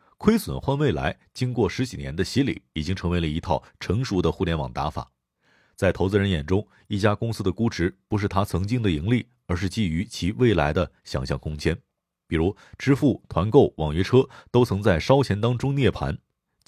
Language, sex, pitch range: Chinese, male, 90-135 Hz